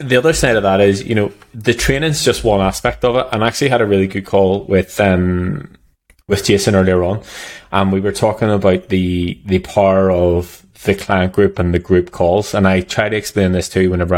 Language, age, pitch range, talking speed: English, 20-39, 90-105 Hz, 230 wpm